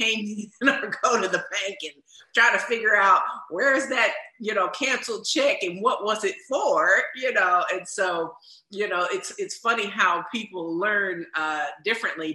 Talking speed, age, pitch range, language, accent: 175 wpm, 50-69, 160-250 Hz, English, American